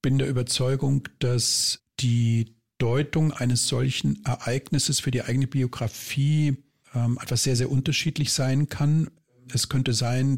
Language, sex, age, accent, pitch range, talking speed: German, male, 50-69, German, 115-135 Hz, 140 wpm